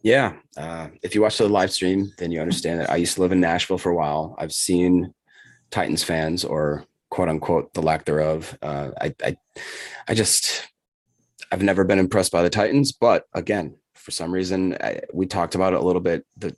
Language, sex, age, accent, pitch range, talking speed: English, male, 30-49, American, 85-95 Hz, 205 wpm